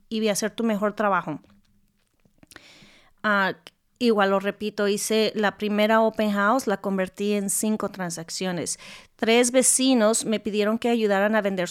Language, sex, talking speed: Spanish, female, 145 wpm